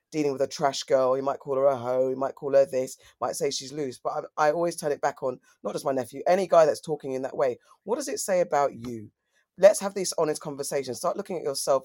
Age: 20-39